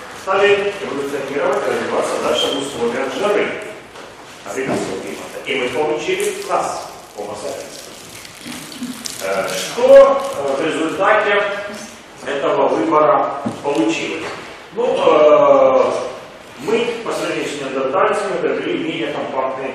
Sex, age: male, 30-49